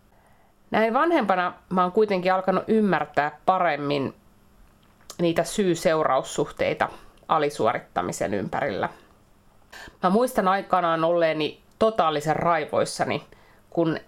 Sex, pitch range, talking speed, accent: female, 150-195 Hz, 80 wpm, native